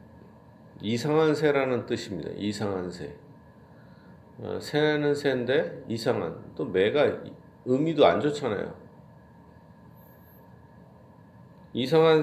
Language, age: Korean, 40-59